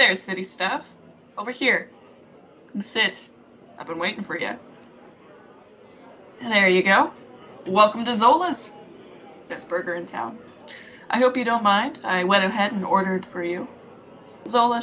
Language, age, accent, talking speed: English, 20-39, American, 140 wpm